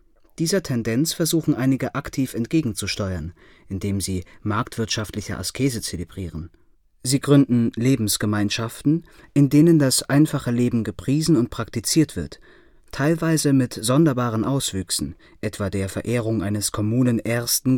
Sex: male